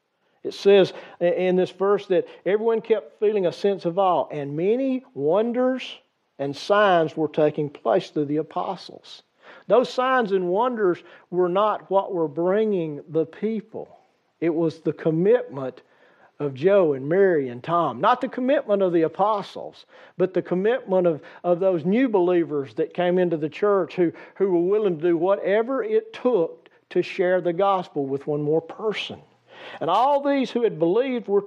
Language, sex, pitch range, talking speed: English, male, 170-230 Hz, 170 wpm